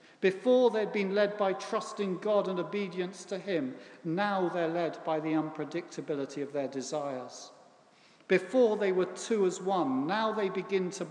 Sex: male